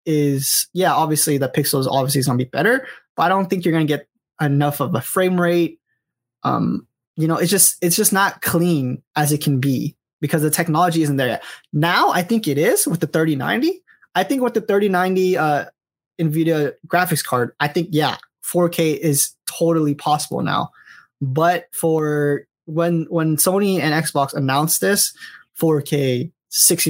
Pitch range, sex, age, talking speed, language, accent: 140-170 Hz, male, 20-39, 170 wpm, English, American